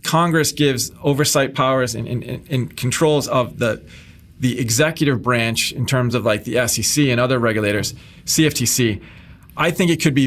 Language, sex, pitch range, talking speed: English, male, 125-150 Hz, 150 wpm